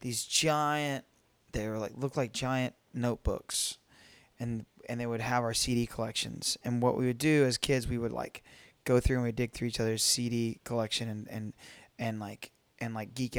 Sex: male